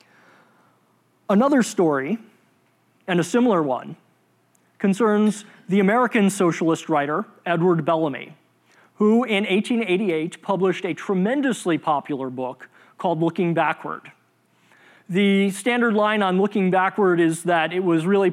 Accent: American